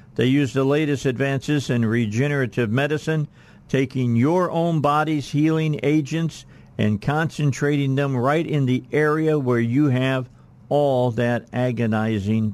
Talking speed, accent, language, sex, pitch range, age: 130 wpm, American, English, male, 125-150 Hz, 50-69